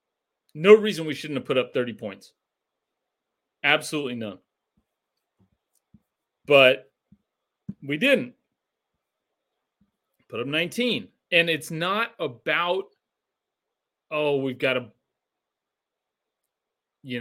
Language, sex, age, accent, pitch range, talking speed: English, male, 30-49, American, 115-150 Hz, 90 wpm